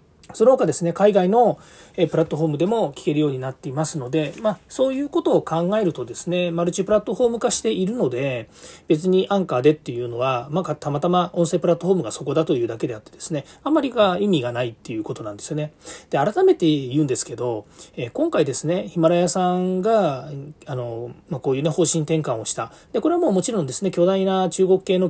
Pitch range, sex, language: 135-185 Hz, male, Japanese